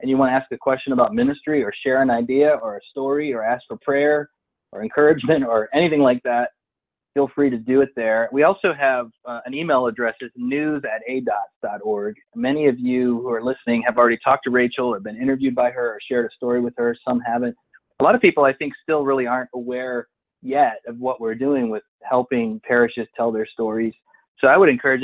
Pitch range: 120-135 Hz